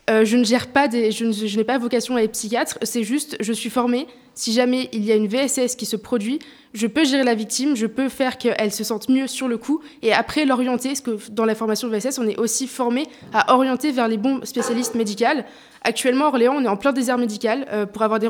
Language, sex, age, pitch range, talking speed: French, female, 20-39, 220-260 Hz, 255 wpm